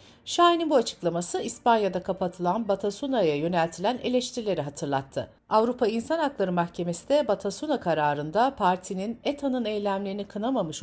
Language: Turkish